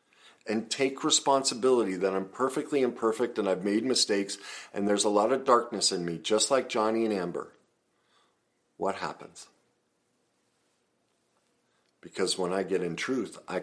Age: 50-69